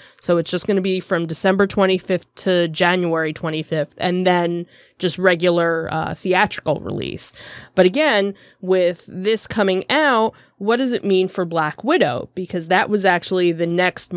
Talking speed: 160 wpm